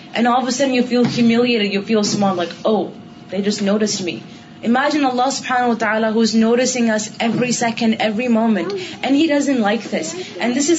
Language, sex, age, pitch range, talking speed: Urdu, female, 20-39, 215-245 Hz, 205 wpm